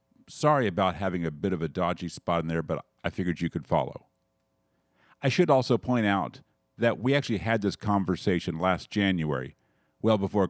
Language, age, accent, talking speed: English, 50-69, American, 185 wpm